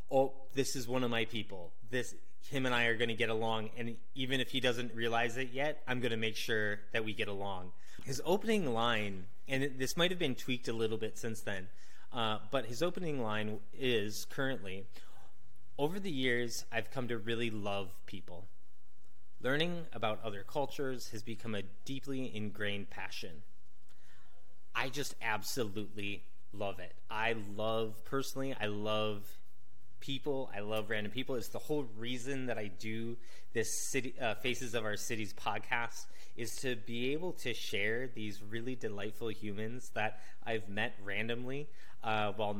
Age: 20-39